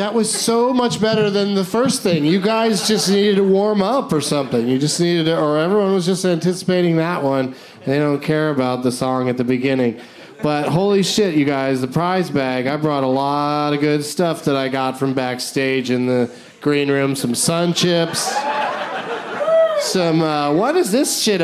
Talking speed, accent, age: 200 wpm, American, 30-49